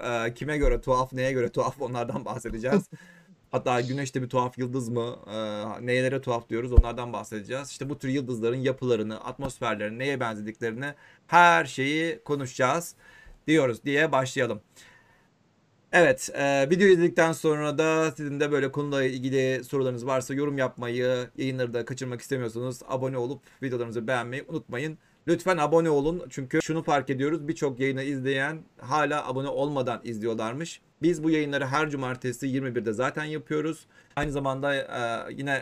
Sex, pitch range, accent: male, 125-145 Hz, native